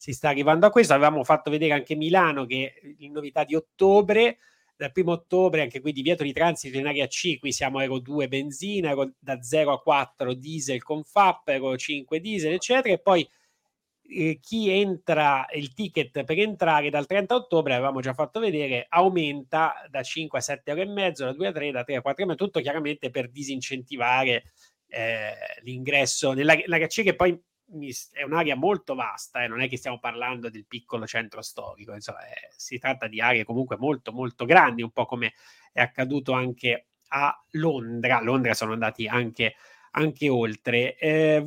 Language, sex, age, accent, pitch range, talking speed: Italian, male, 30-49, native, 125-160 Hz, 185 wpm